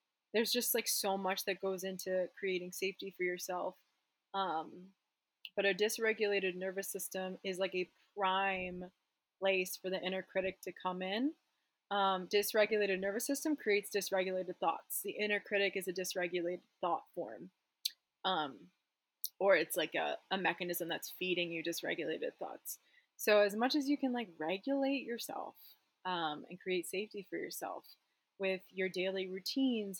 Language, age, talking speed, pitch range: English, 20-39, 150 wpm, 185-205 Hz